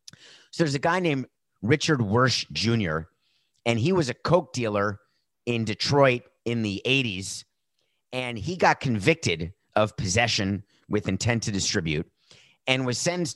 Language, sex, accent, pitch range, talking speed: English, male, American, 105-145 Hz, 145 wpm